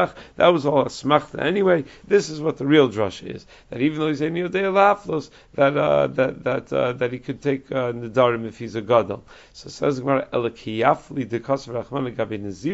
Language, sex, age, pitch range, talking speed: English, male, 40-59, 125-165 Hz, 180 wpm